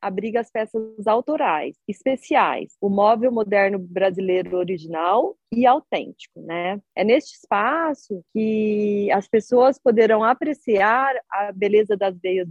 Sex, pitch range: female, 190-235 Hz